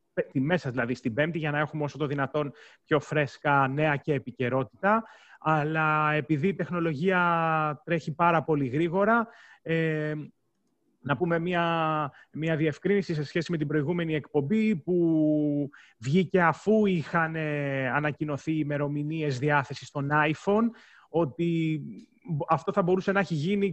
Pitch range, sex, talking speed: 145-190 Hz, male, 130 wpm